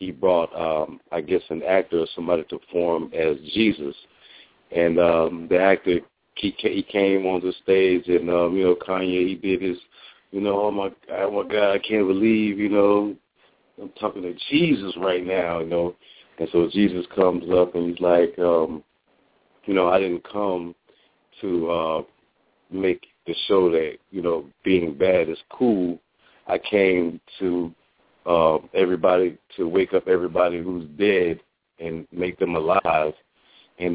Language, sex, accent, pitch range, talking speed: English, male, American, 85-95 Hz, 165 wpm